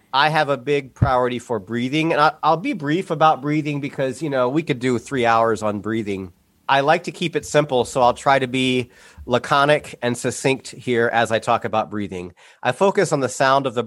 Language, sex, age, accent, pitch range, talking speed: English, male, 30-49, American, 120-160 Hz, 215 wpm